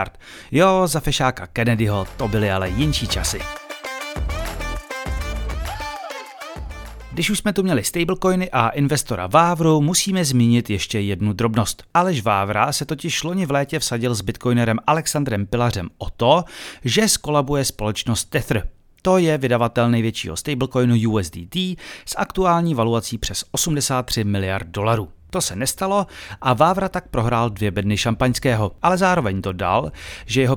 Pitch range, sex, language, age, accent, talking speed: 110-155 Hz, male, Czech, 30-49, native, 135 wpm